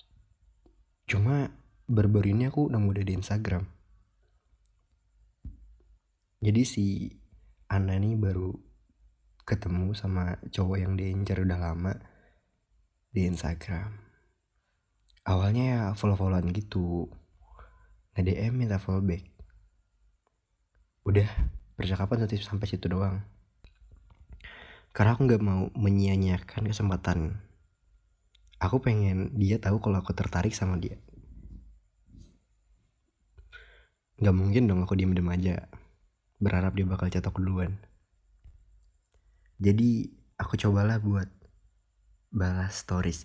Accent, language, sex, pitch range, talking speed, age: native, Indonesian, male, 90-105 Hz, 95 wpm, 20-39